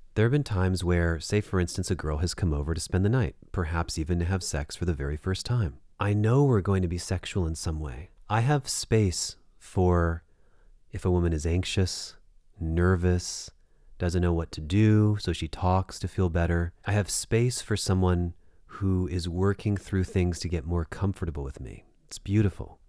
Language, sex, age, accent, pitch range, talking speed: English, male, 30-49, American, 85-100 Hz, 200 wpm